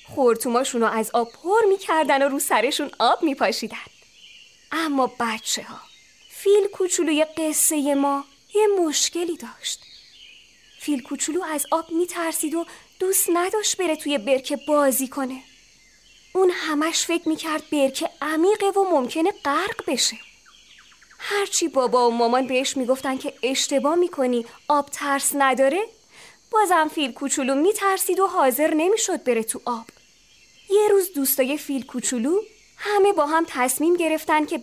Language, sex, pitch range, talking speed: Persian, female, 260-360 Hz, 130 wpm